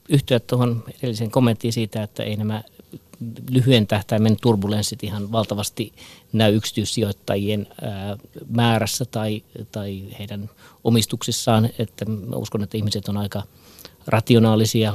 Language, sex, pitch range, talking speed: Finnish, male, 105-125 Hz, 110 wpm